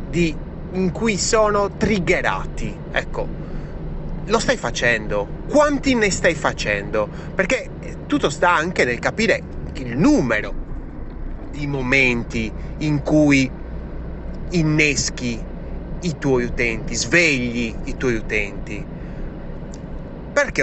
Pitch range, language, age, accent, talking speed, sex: 120-170 Hz, Italian, 30-49, native, 95 wpm, male